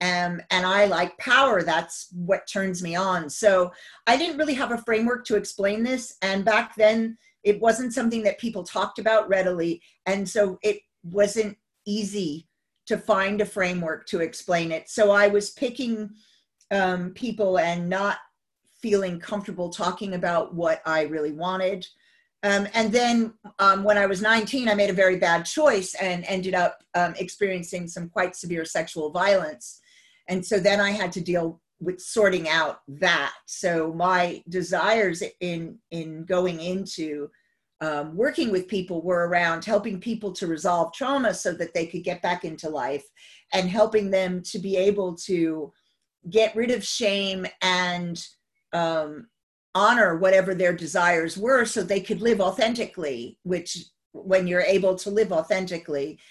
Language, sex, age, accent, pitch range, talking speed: English, female, 40-59, American, 175-215 Hz, 160 wpm